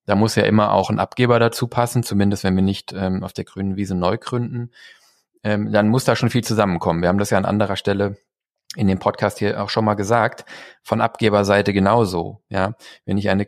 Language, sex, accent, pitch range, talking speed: German, male, German, 100-115 Hz, 220 wpm